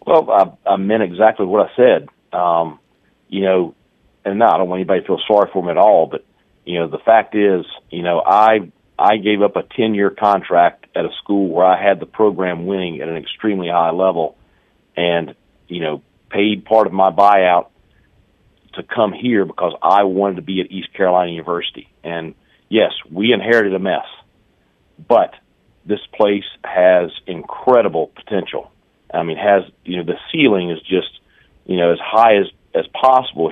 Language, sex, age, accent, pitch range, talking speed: English, male, 40-59, American, 85-105 Hz, 180 wpm